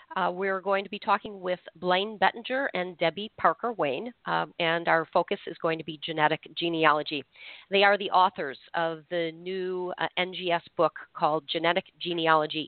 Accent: American